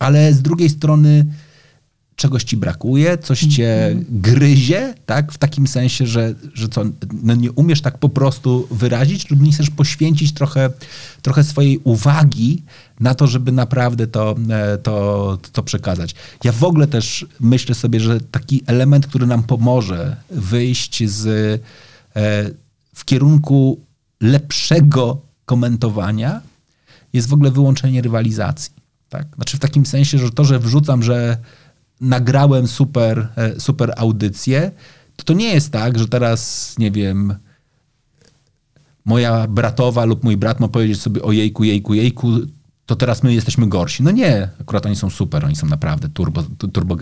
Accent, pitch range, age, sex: native, 110-140 Hz, 40-59, male